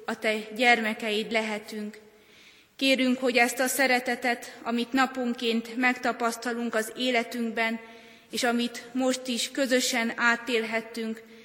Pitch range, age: 220-245 Hz, 20-39